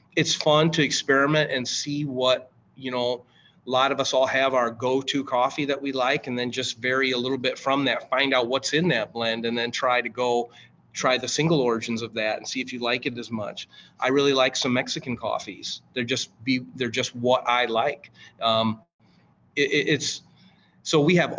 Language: English